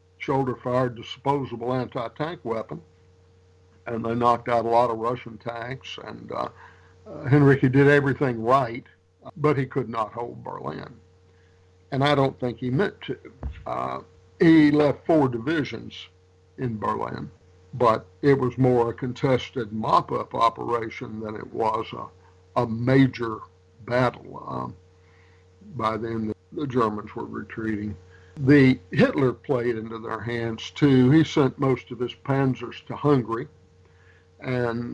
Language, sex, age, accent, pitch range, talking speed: English, male, 60-79, American, 90-130 Hz, 135 wpm